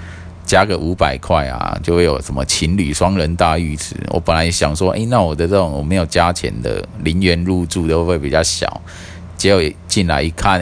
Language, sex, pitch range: Chinese, male, 85-95 Hz